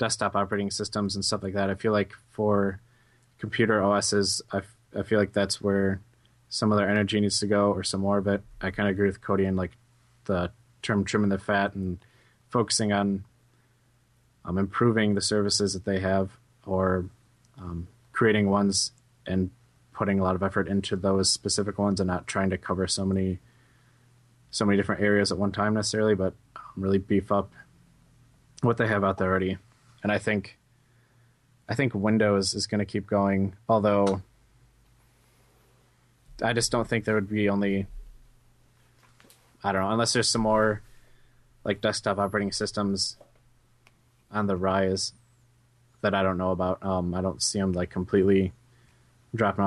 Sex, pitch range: male, 100-120 Hz